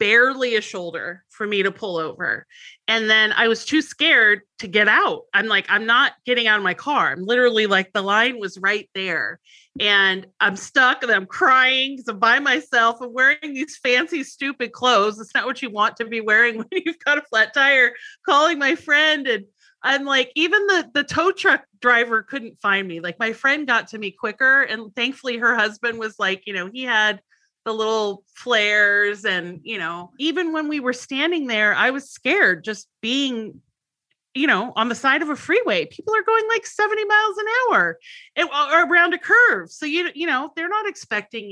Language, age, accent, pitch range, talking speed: English, 30-49, American, 205-290 Hz, 205 wpm